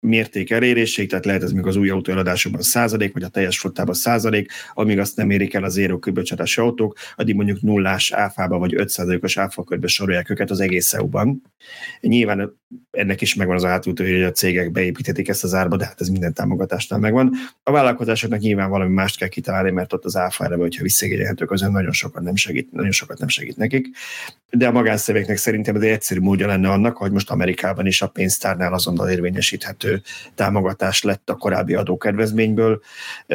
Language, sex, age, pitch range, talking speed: Hungarian, male, 30-49, 95-115 Hz, 185 wpm